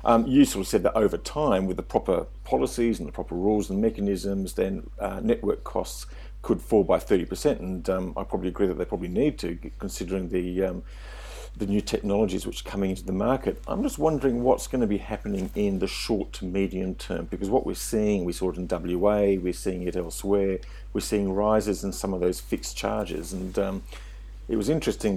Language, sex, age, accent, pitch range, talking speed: English, male, 50-69, British, 95-115 Hz, 210 wpm